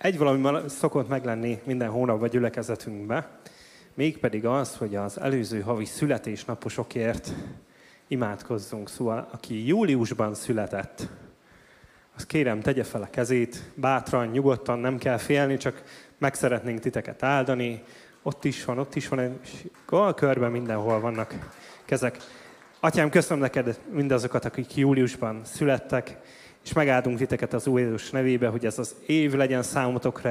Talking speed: 135 wpm